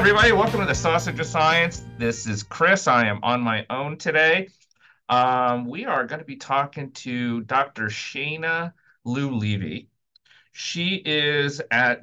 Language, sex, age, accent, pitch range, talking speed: English, male, 40-59, American, 105-135 Hz, 155 wpm